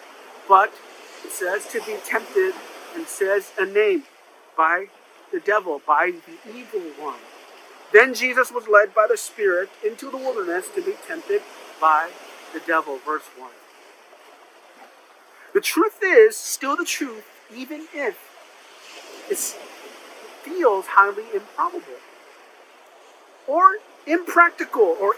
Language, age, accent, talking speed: English, 50-69, American, 120 wpm